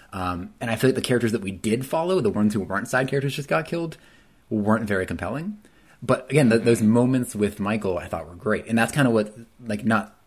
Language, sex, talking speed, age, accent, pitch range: English, male, 240 wpm, 30-49, American, 95-120 Hz